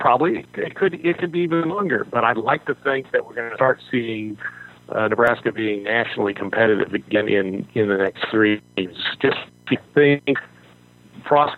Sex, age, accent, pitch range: male, 50-69, American, 90-120 Hz